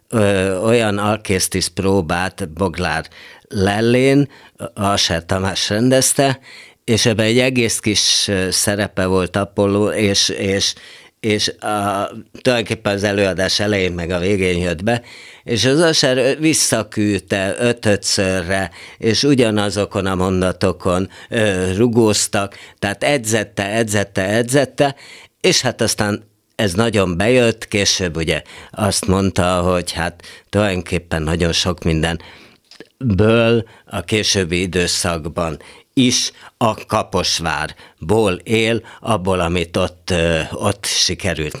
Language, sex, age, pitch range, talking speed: Hungarian, male, 50-69, 90-115 Hz, 100 wpm